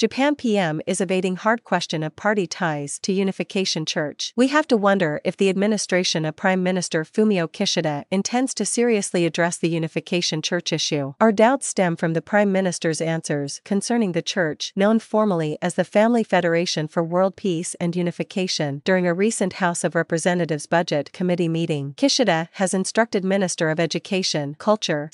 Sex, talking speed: female, 165 wpm